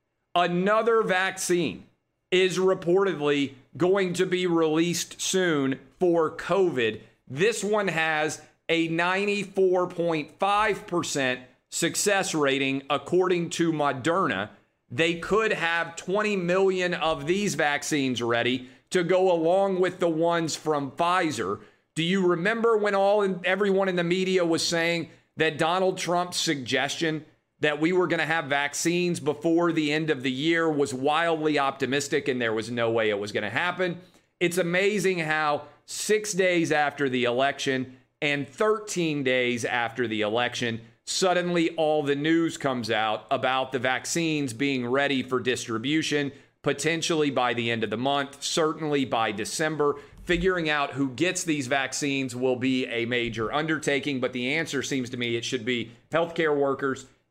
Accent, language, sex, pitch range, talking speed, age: American, English, male, 135-175 Hz, 145 wpm, 40-59